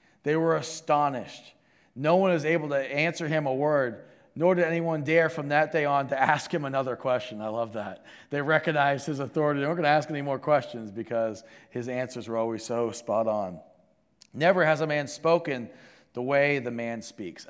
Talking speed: 200 wpm